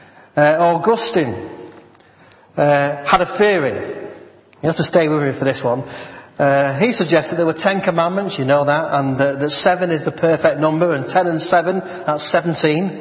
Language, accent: English, British